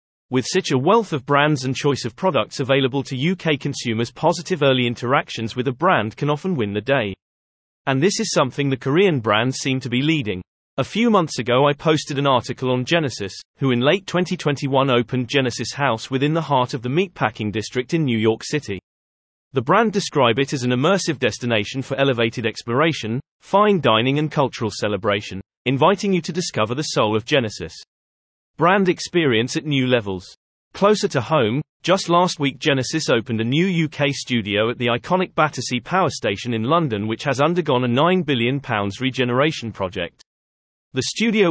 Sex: male